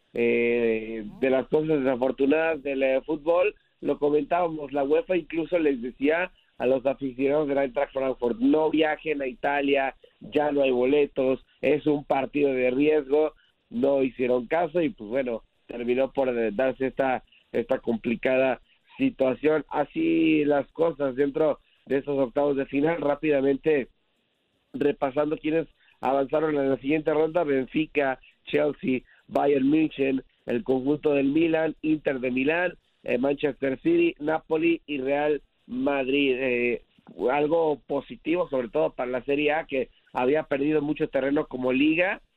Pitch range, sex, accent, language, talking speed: 130-155 Hz, male, Mexican, Spanish, 140 wpm